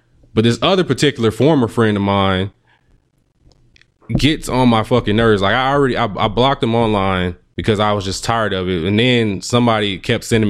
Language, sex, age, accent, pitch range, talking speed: English, male, 20-39, American, 95-125 Hz, 190 wpm